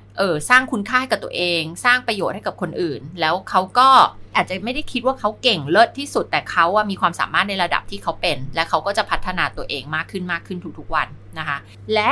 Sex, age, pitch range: female, 20-39, 130-225 Hz